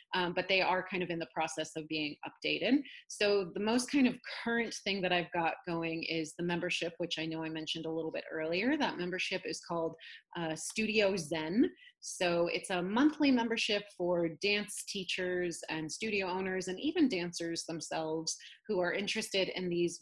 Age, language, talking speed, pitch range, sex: 30-49, English, 185 wpm, 165-215 Hz, female